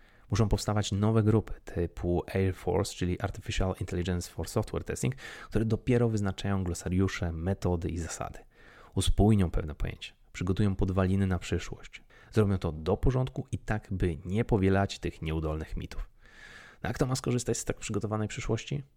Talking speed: 150 wpm